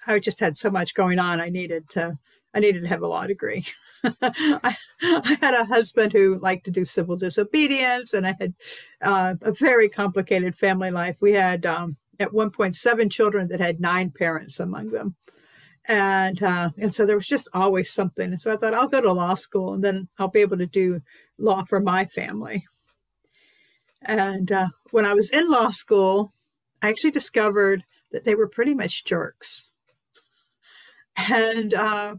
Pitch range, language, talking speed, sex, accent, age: 180-225 Hz, English, 180 wpm, female, American, 50-69